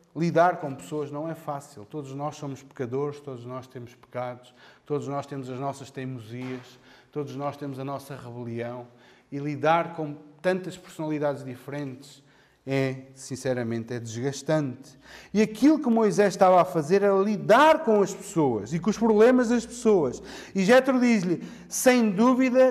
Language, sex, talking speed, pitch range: Portuguese, male, 155 wpm, 145-245 Hz